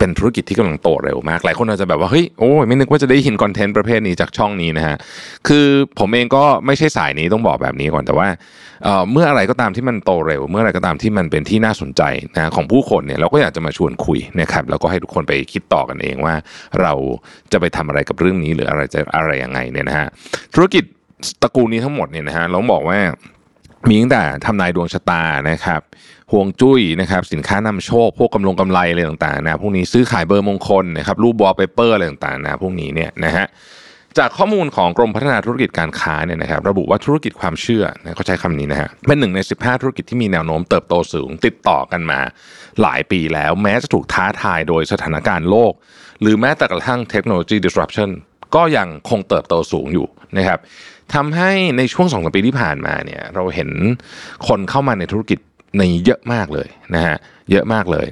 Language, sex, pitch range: Thai, male, 85-120 Hz